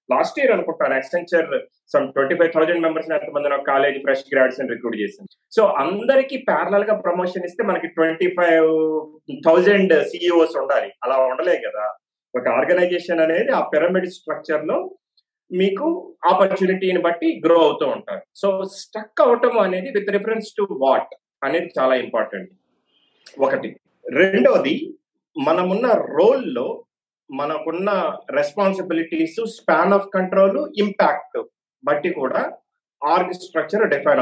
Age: 30-49